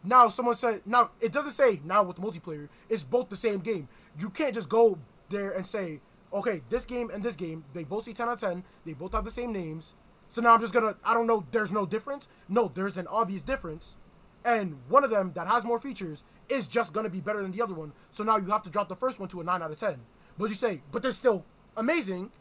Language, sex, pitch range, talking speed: English, male, 175-225 Hz, 255 wpm